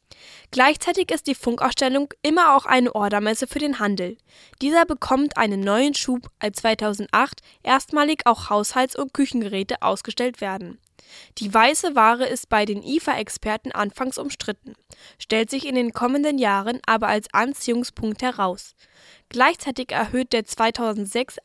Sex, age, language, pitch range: female, 10-29, German, 215-265 Hz